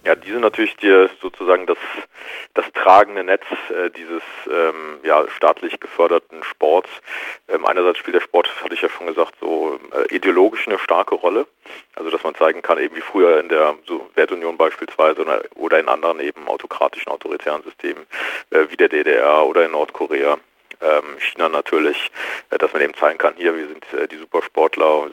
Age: 40-59